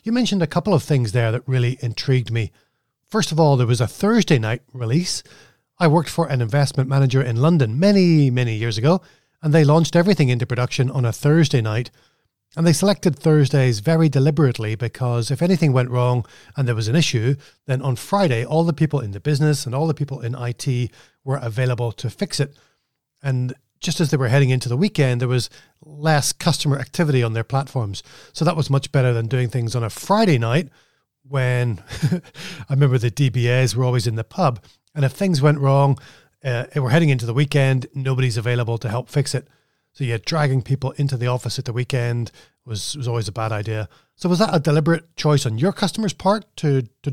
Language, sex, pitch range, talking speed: English, male, 125-155 Hz, 210 wpm